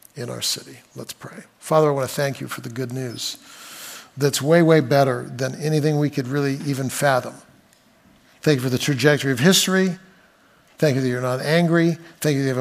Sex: male